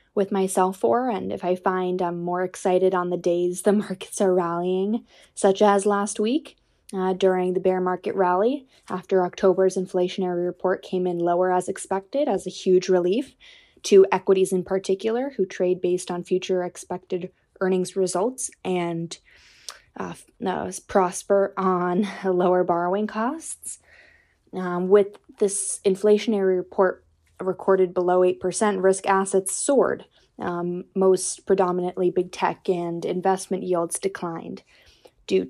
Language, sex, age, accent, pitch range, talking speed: English, female, 20-39, American, 180-195 Hz, 135 wpm